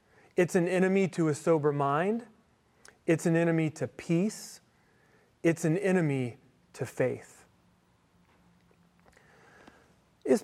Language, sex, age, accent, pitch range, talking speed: English, male, 40-59, American, 145-195 Hz, 105 wpm